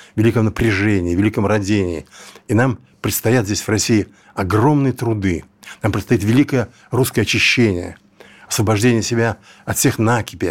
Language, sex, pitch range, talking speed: Russian, male, 95-115 Hz, 125 wpm